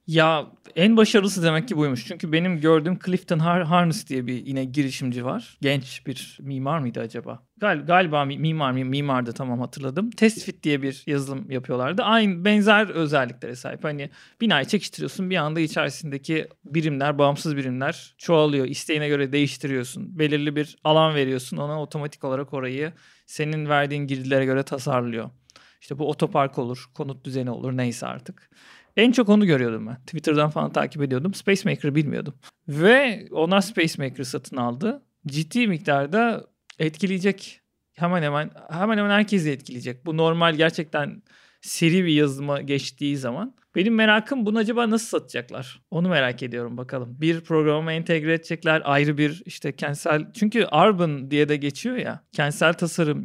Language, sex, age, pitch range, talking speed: Turkish, male, 40-59, 140-180 Hz, 145 wpm